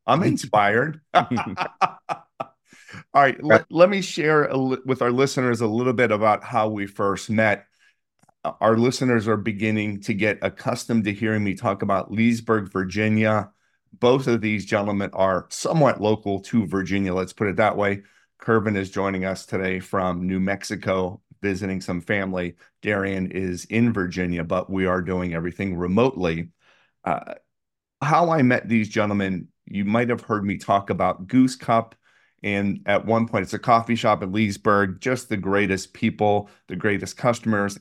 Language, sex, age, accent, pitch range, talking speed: English, male, 40-59, American, 95-115 Hz, 160 wpm